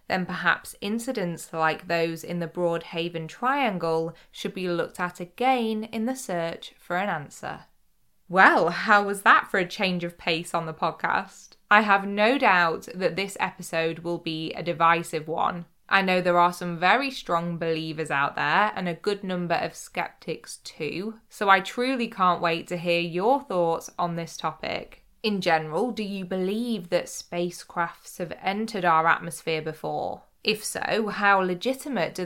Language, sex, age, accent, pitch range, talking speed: English, female, 20-39, British, 165-200 Hz, 170 wpm